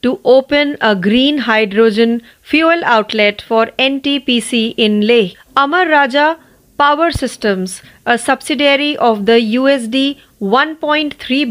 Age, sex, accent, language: 30-49, female, native, Marathi